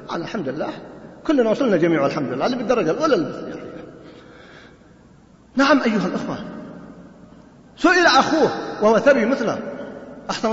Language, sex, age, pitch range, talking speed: Arabic, male, 40-59, 185-290 Hz, 115 wpm